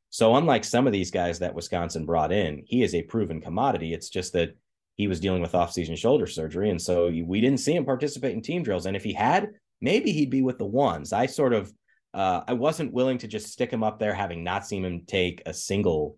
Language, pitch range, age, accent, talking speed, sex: English, 85-105 Hz, 30-49, American, 240 wpm, male